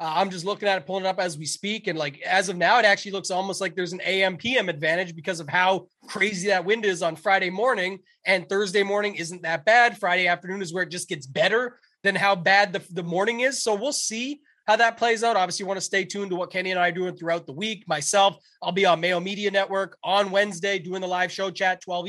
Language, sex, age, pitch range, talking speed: English, male, 20-39, 175-205 Hz, 260 wpm